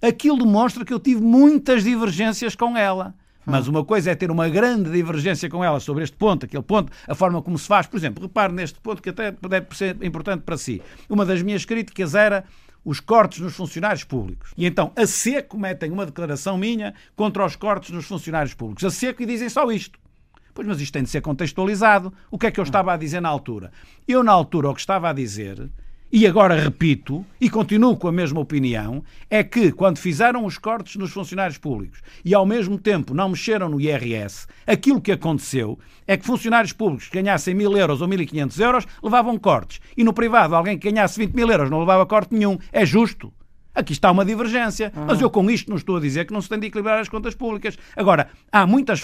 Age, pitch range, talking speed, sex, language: 50-69, 165-220 Hz, 220 wpm, male, Portuguese